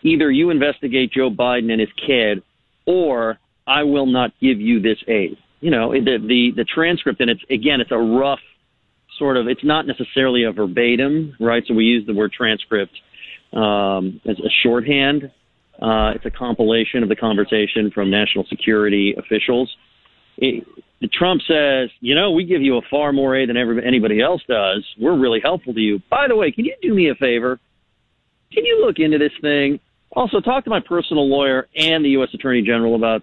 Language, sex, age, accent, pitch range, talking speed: English, male, 40-59, American, 110-145 Hz, 195 wpm